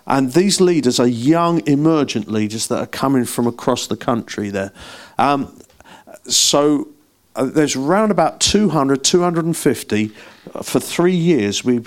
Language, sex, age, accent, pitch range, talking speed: English, male, 50-69, British, 115-155 Hz, 140 wpm